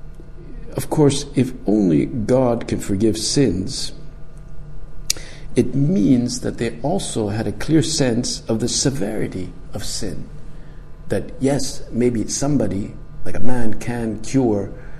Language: English